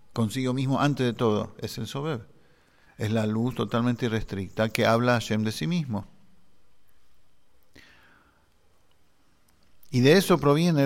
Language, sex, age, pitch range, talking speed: English, male, 50-69, 110-130 Hz, 135 wpm